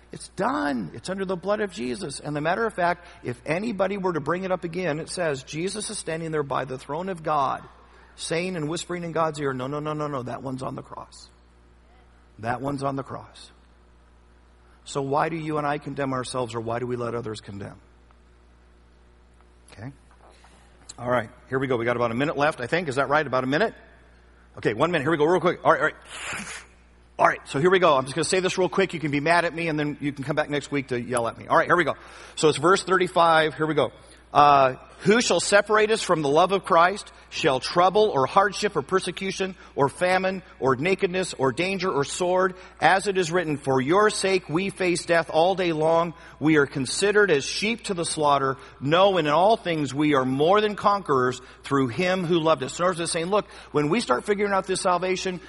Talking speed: 230 wpm